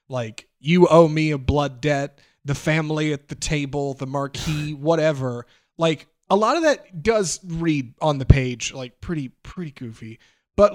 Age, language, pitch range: 30-49, English, 130-175 Hz